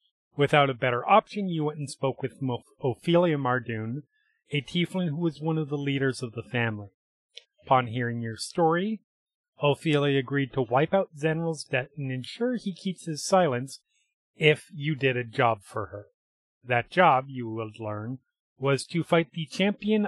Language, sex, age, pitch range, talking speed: English, male, 30-49, 120-160 Hz, 165 wpm